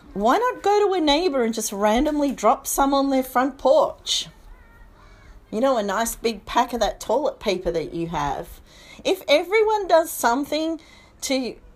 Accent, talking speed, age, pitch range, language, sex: Australian, 170 wpm, 40-59, 185-230 Hz, English, female